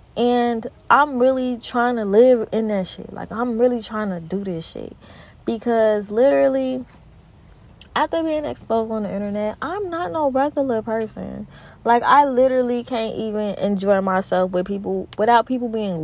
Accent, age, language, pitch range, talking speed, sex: American, 20-39, English, 195-265 Hz, 155 wpm, female